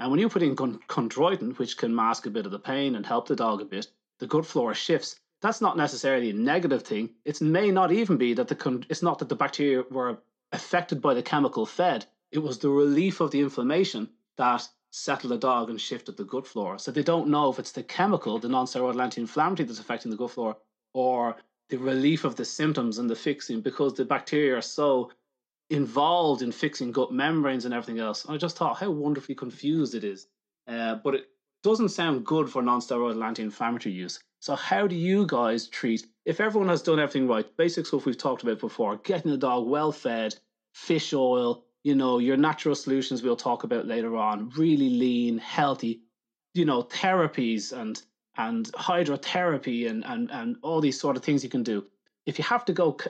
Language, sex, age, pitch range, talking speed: English, male, 30-49, 120-160 Hz, 205 wpm